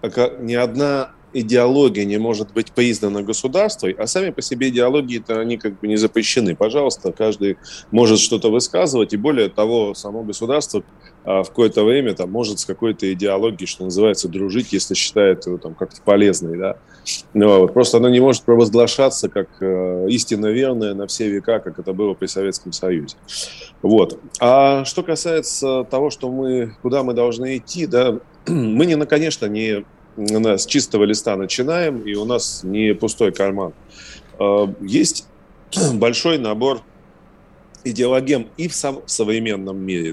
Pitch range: 105-130 Hz